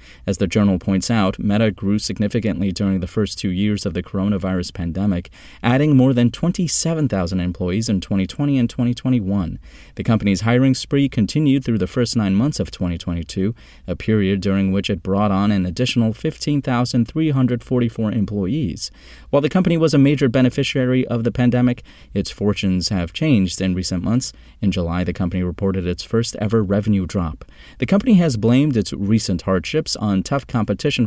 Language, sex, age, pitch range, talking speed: English, male, 30-49, 95-125 Hz, 165 wpm